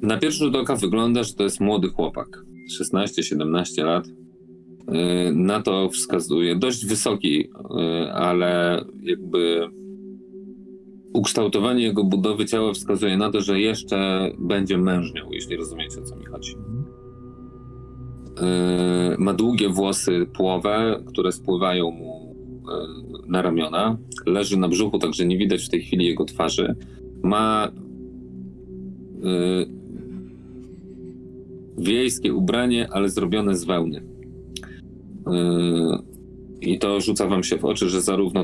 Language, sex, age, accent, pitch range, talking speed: Polish, male, 40-59, native, 80-105 Hz, 110 wpm